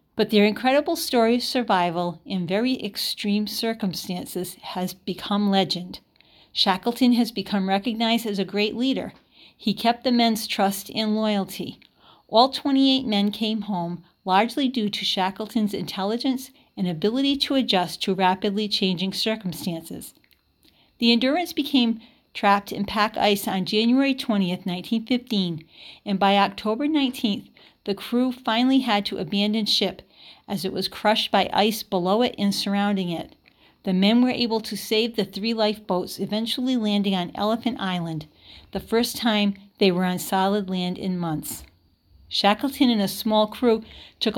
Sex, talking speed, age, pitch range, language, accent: female, 145 wpm, 50-69, 190-230 Hz, English, American